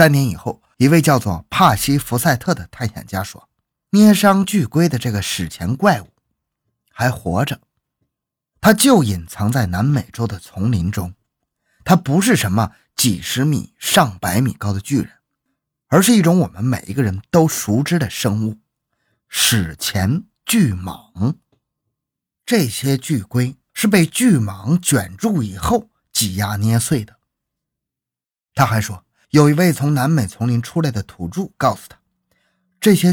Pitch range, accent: 105-170 Hz, native